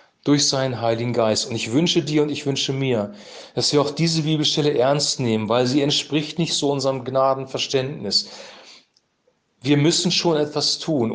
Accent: German